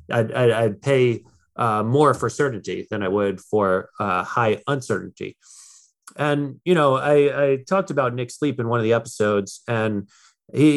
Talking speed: 165 wpm